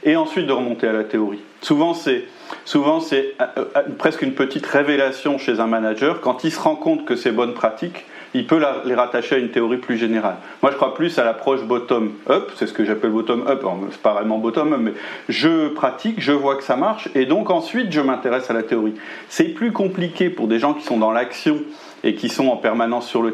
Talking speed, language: 220 wpm, French